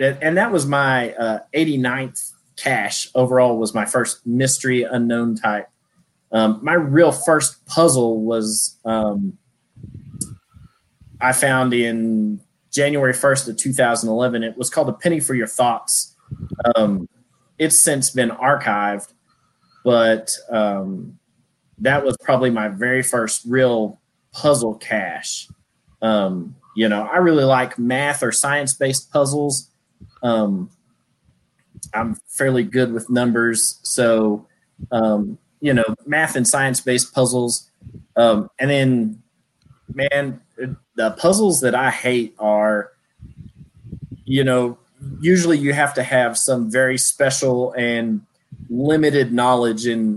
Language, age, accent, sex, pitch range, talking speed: English, 30-49, American, male, 110-135 Hz, 120 wpm